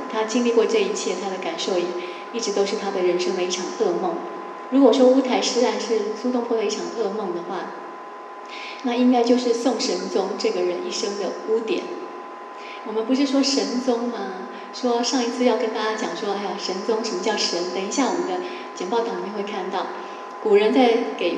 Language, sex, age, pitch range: Chinese, female, 20-39, 205-260 Hz